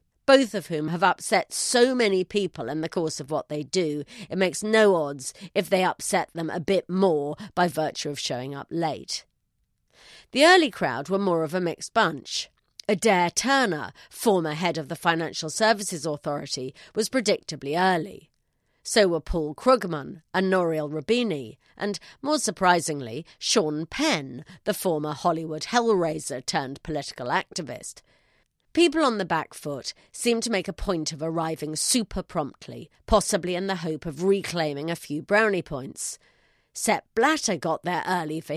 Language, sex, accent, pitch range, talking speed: English, female, British, 155-205 Hz, 160 wpm